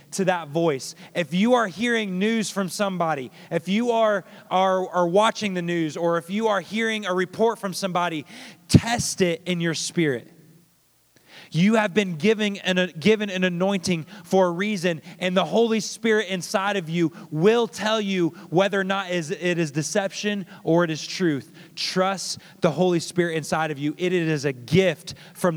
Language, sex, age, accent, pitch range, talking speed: English, male, 30-49, American, 160-195 Hz, 175 wpm